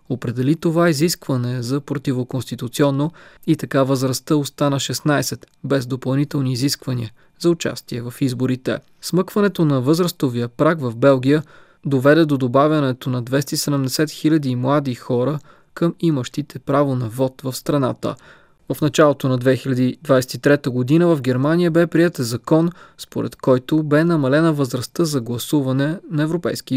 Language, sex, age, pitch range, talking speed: Bulgarian, male, 20-39, 130-160 Hz, 130 wpm